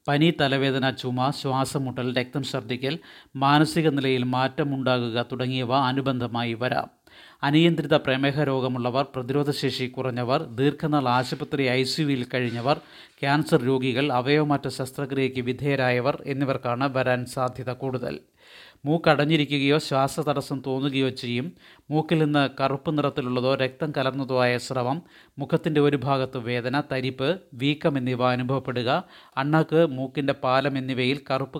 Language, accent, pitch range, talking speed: Malayalam, native, 130-145 Hz, 110 wpm